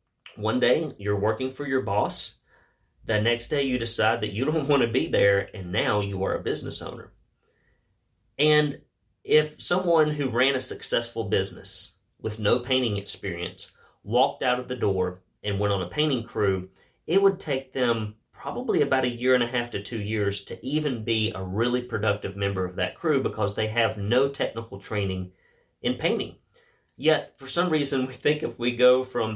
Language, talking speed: English, 185 wpm